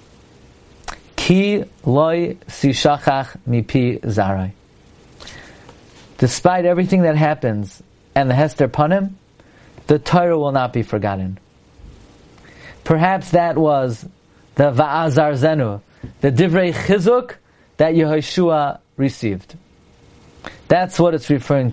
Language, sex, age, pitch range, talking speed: English, male, 40-59, 120-180 Hz, 95 wpm